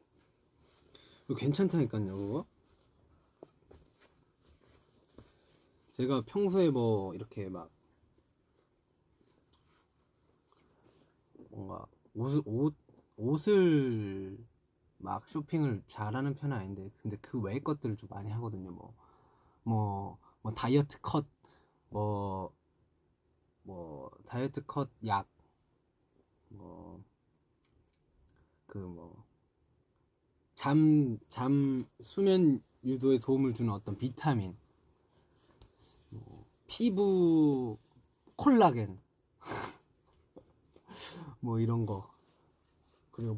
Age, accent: 30-49, native